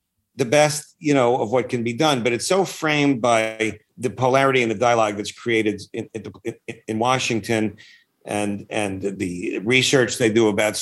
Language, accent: English, American